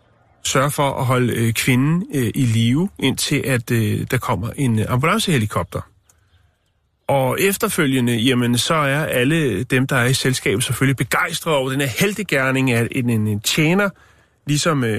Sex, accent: male, native